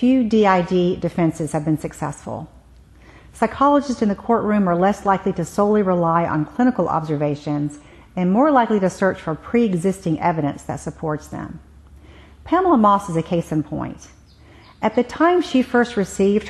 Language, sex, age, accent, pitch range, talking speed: English, female, 50-69, American, 155-205 Hz, 155 wpm